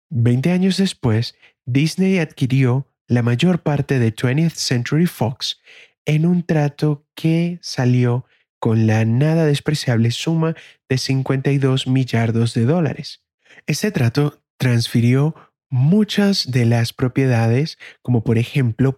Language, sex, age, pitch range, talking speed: Spanish, male, 30-49, 120-160 Hz, 115 wpm